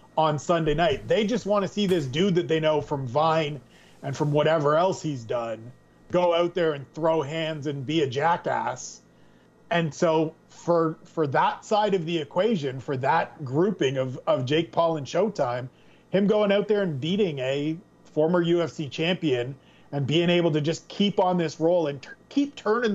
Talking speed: 190 wpm